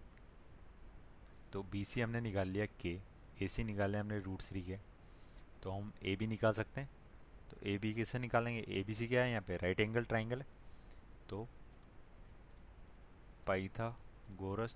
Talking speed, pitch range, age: 165 wpm, 95-115 Hz, 30-49